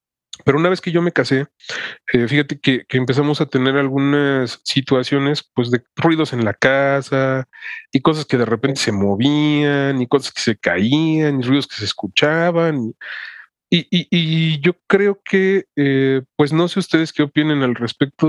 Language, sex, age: Spanish, male, 30-49